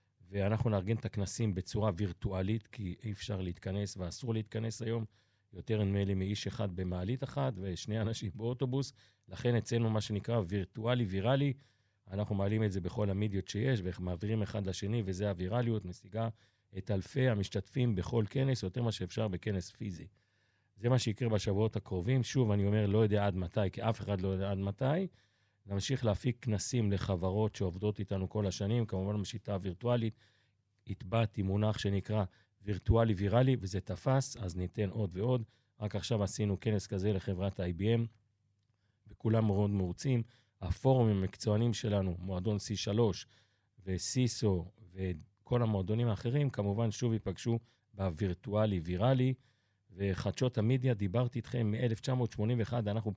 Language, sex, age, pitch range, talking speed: Hebrew, male, 40-59, 100-115 Hz, 140 wpm